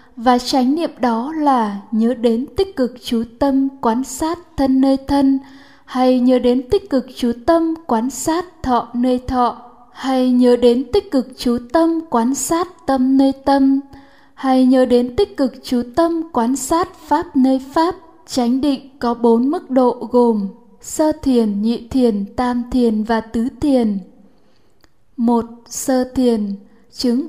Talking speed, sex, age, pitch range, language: 160 wpm, female, 10-29, 240-285 Hz, Vietnamese